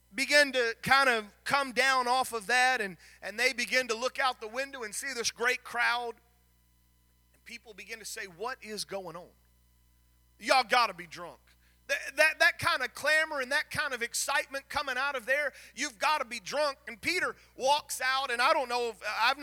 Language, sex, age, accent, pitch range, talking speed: English, male, 30-49, American, 205-275 Hz, 200 wpm